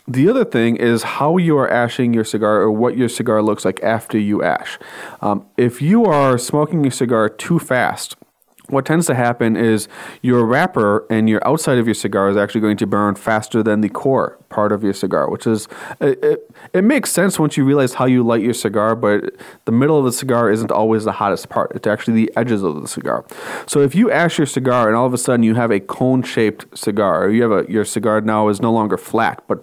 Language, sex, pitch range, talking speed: English, male, 110-135 Hz, 235 wpm